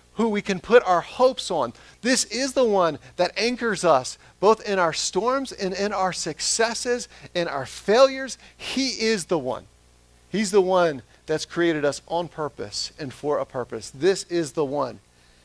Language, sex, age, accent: English, male, 40-59, American